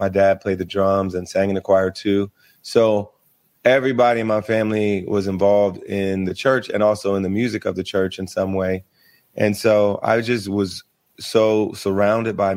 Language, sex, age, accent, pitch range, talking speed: English, male, 30-49, American, 95-110 Hz, 190 wpm